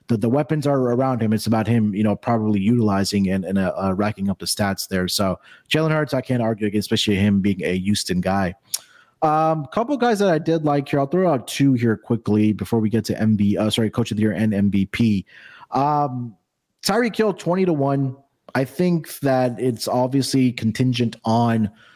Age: 30-49